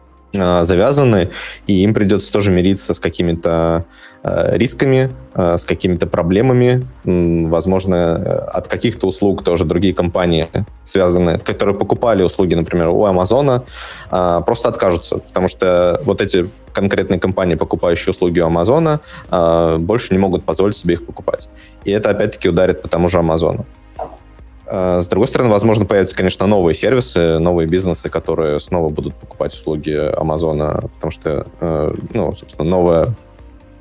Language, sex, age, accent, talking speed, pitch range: Russian, male, 20-39, native, 130 wpm, 85-100 Hz